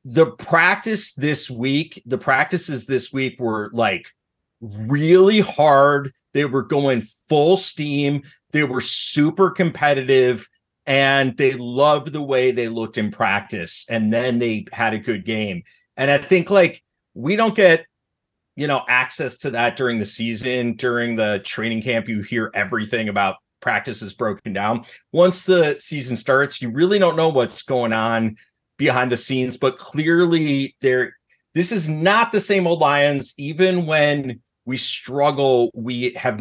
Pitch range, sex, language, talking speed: 125-170 Hz, male, English, 155 wpm